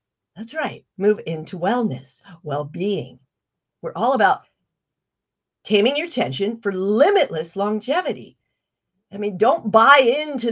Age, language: 50-69, English